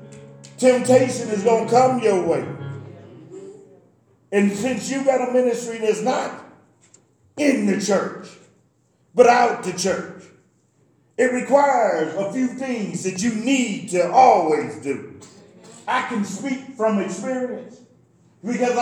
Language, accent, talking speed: English, American, 125 wpm